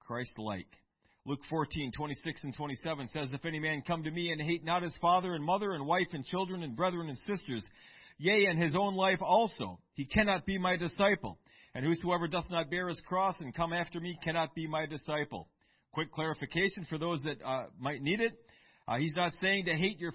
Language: English